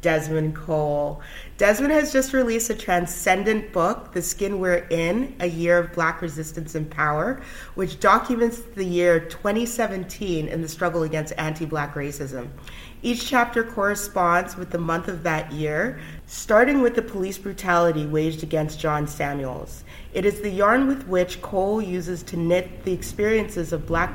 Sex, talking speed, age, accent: female, 155 wpm, 30-49, American